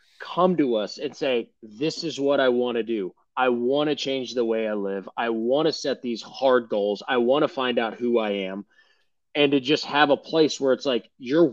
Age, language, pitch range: 20-39, English, 115-155 Hz